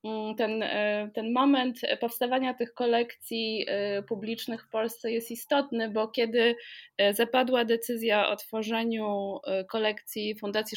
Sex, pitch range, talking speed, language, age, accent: female, 205-240 Hz, 105 wpm, Polish, 20-39, native